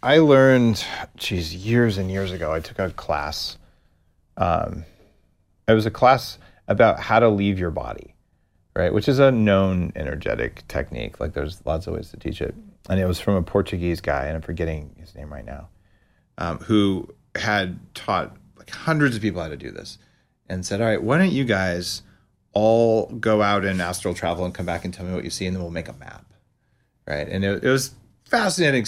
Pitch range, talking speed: 90-110 Hz, 205 wpm